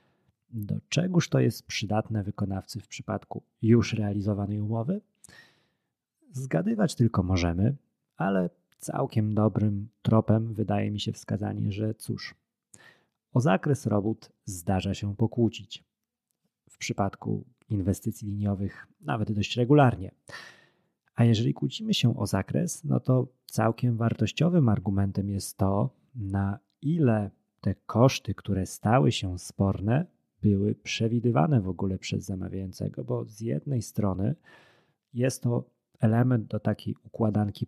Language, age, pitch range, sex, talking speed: Polish, 30-49, 105-125 Hz, male, 120 wpm